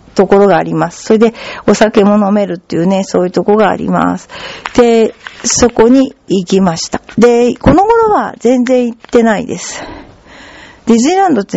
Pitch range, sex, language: 185-270 Hz, female, Japanese